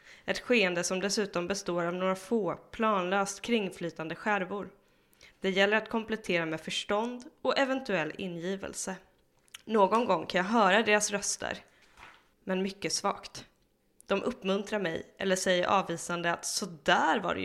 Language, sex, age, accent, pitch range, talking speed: Swedish, female, 20-39, native, 175-220 Hz, 140 wpm